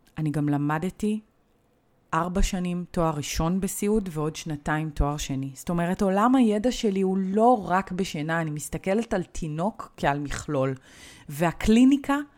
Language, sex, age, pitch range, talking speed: Hebrew, female, 30-49, 150-200 Hz, 135 wpm